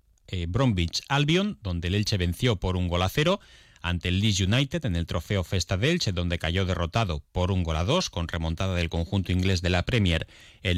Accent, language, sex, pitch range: Spanish, Spanish, male, 90-120 Hz